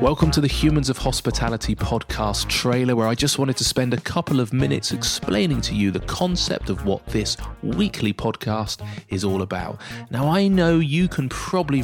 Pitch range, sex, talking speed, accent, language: 110-145 Hz, male, 190 wpm, British, English